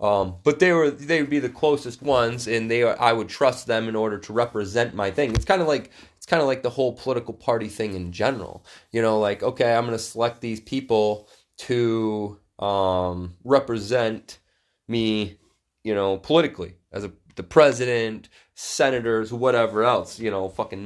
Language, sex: English, male